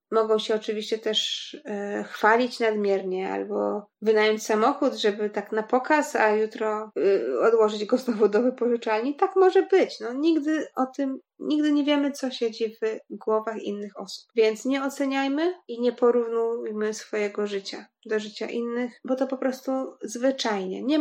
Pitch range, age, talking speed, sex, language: 215-265 Hz, 20-39, 155 wpm, female, Polish